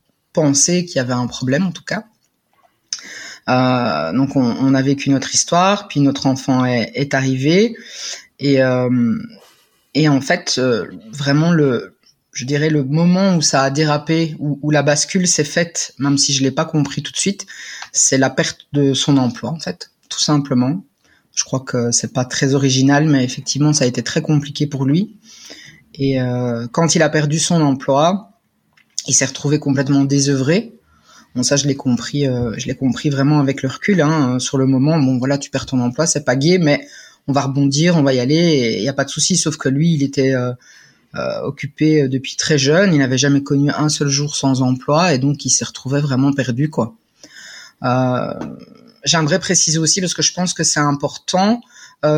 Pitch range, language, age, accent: 135-160 Hz, French, 20-39, French